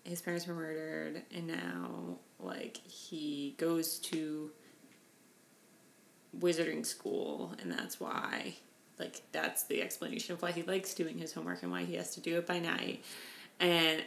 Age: 20-39